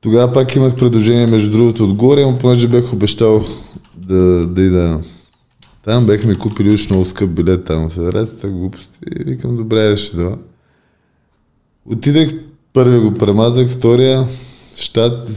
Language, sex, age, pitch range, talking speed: Bulgarian, male, 20-39, 100-125 Hz, 140 wpm